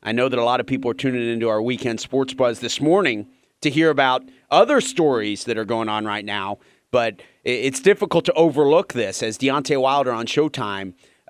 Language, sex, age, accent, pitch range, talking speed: English, male, 30-49, American, 120-180 Hz, 200 wpm